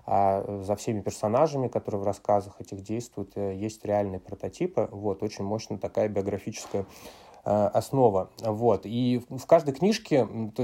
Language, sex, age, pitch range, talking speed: Russian, male, 20-39, 100-120 Hz, 135 wpm